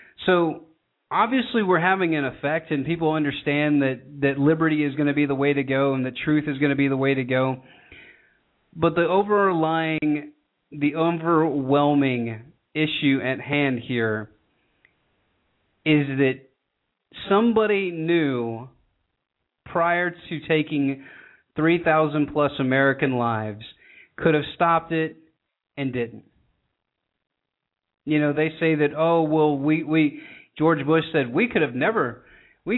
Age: 30-49